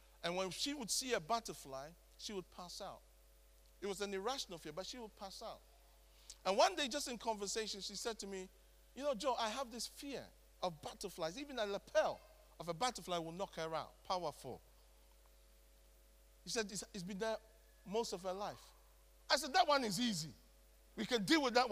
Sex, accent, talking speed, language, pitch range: male, Nigerian, 195 wpm, English, 165-240 Hz